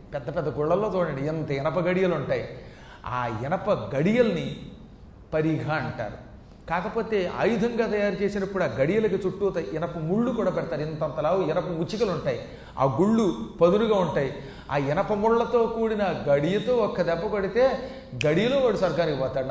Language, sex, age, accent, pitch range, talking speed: Telugu, male, 40-59, native, 155-220 Hz, 135 wpm